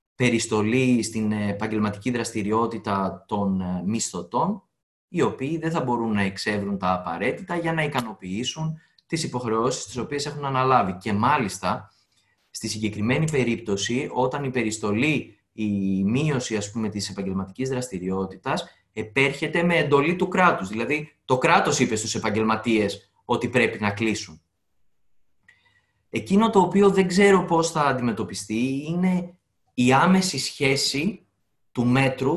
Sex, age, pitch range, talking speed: male, 20-39, 110-150 Hz, 125 wpm